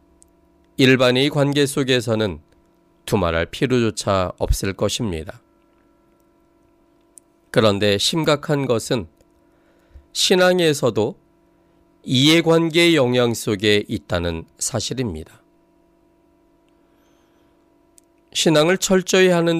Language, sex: Korean, male